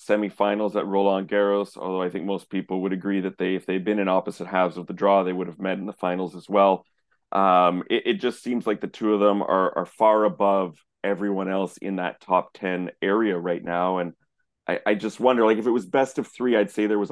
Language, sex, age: English, male, 30-49